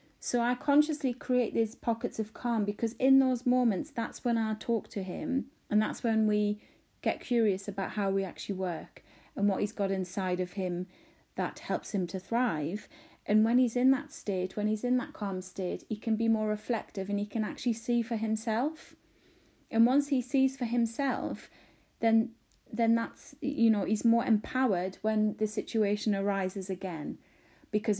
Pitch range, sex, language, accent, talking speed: 195-245 Hz, female, English, British, 180 wpm